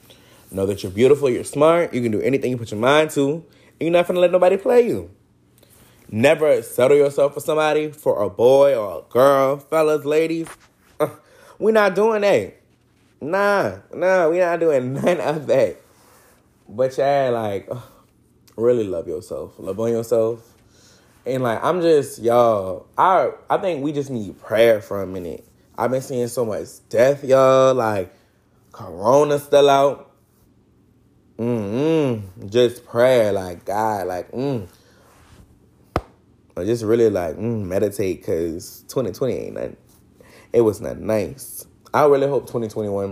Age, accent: 20-39, American